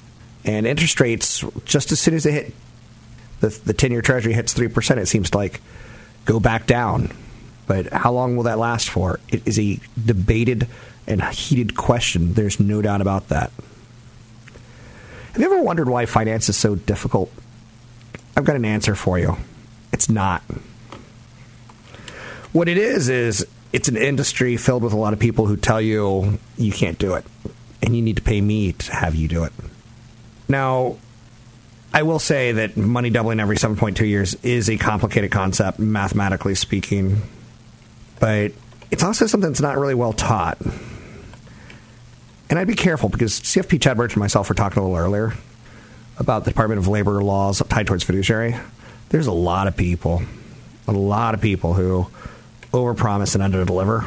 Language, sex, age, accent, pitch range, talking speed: English, male, 30-49, American, 105-120 Hz, 170 wpm